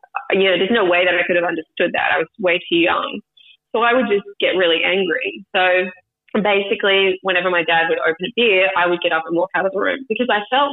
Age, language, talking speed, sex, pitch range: 20-39, English, 250 wpm, female, 175-230 Hz